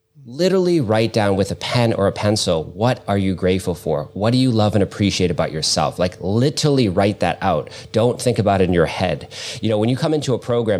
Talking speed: 235 wpm